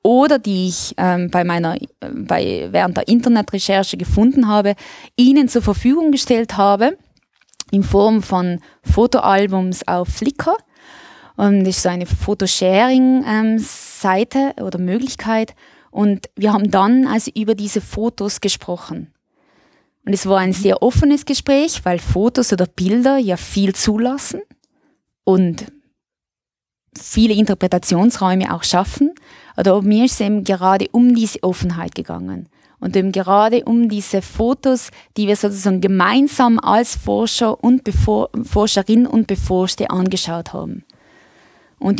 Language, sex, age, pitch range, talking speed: German, female, 20-39, 190-240 Hz, 130 wpm